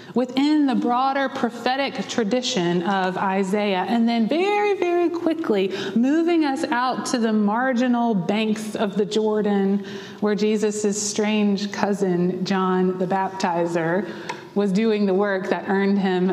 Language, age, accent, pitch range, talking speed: English, 30-49, American, 190-255 Hz, 130 wpm